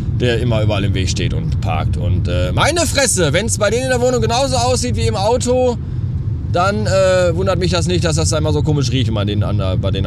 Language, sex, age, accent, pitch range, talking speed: German, male, 20-39, German, 110-155 Hz, 260 wpm